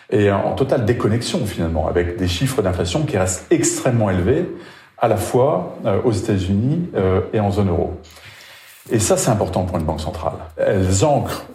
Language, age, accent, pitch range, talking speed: French, 40-59, French, 95-125 Hz, 165 wpm